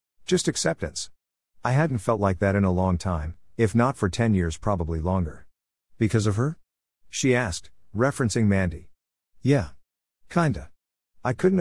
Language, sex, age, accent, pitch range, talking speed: English, male, 50-69, American, 85-120 Hz, 150 wpm